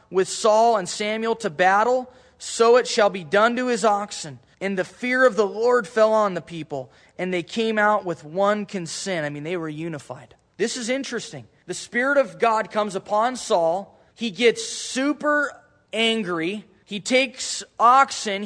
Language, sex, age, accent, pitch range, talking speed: English, male, 20-39, American, 175-225 Hz, 170 wpm